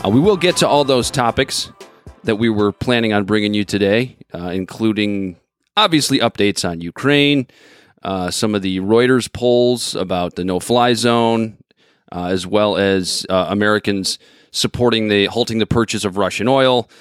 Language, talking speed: English, 160 wpm